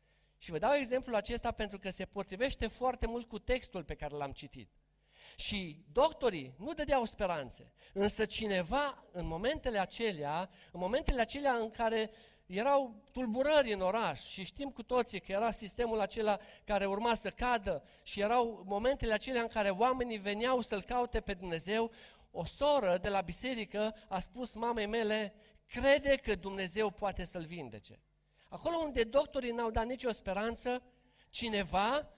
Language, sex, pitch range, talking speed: Romanian, male, 185-245 Hz, 155 wpm